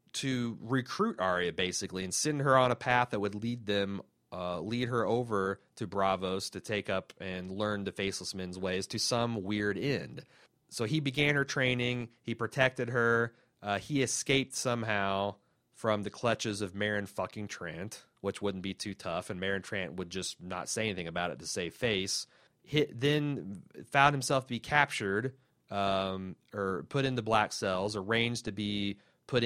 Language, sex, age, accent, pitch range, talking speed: English, male, 30-49, American, 95-120 Hz, 175 wpm